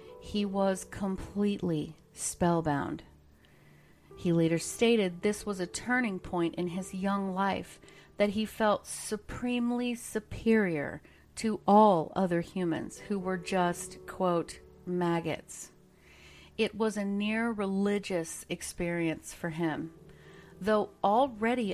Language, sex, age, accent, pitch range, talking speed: English, female, 40-59, American, 165-210 Hz, 110 wpm